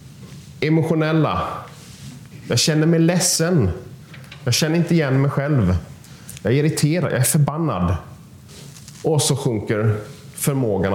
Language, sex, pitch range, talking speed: Danish, male, 120-155 Hz, 110 wpm